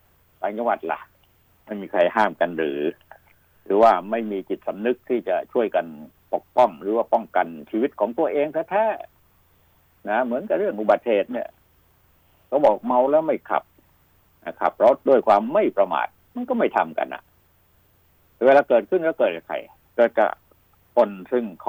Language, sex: Thai, male